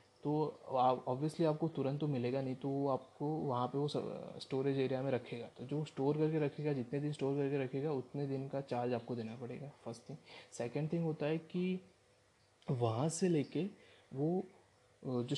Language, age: Hindi, 20-39